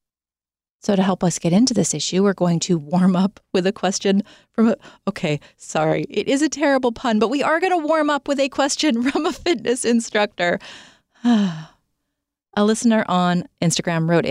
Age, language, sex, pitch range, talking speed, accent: 30-49, English, female, 170-215 Hz, 185 wpm, American